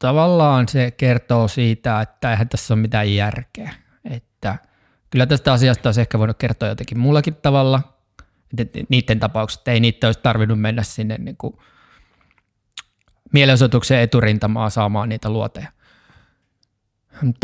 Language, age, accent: Finnish, 20-39, native